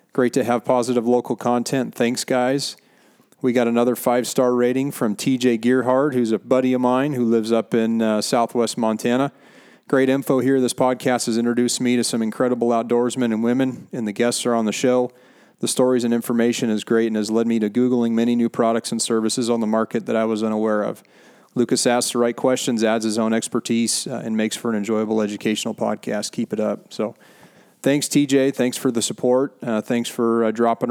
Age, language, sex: 40-59, English, male